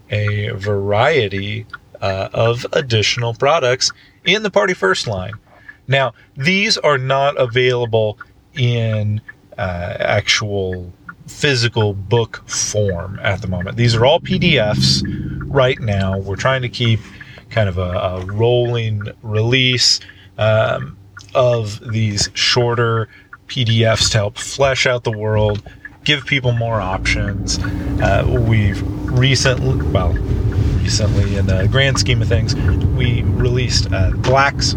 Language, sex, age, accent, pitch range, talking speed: English, male, 30-49, American, 100-120 Hz, 125 wpm